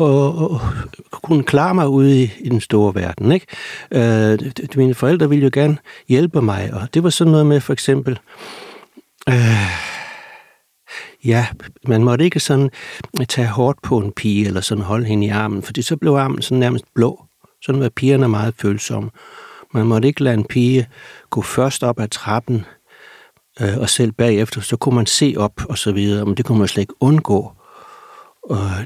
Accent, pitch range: native, 105-140 Hz